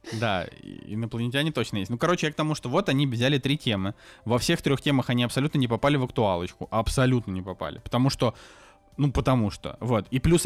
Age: 20-39